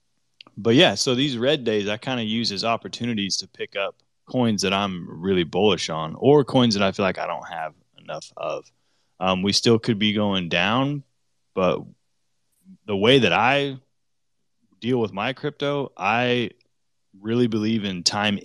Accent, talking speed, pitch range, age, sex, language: American, 170 wpm, 95-120 Hz, 20-39, male, English